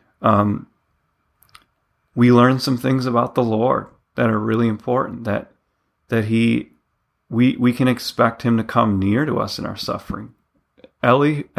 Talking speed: 150 wpm